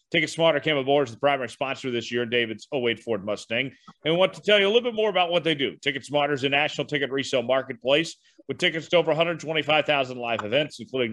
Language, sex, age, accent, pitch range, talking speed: English, male, 40-59, American, 135-180 Hz, 235 wpm